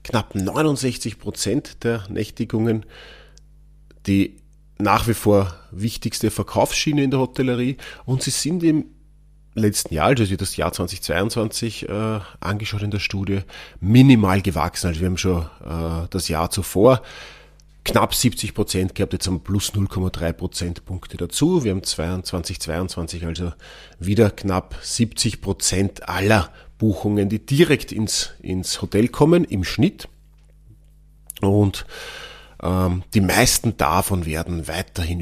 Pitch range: 95-125 Hz